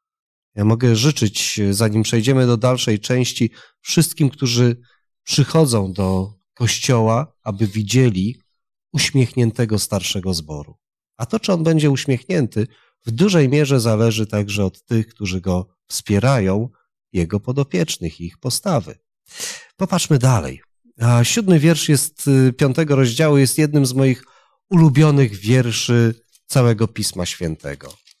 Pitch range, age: 105-135 Hz, 30-49